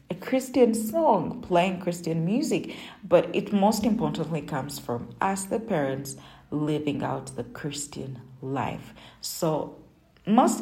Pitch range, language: 145-215 Hz, English